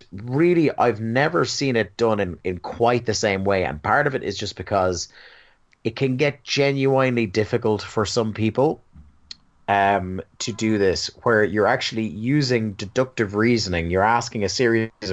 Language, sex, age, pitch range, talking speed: English, male, 30-49, 95-120 Hz, 165 wpm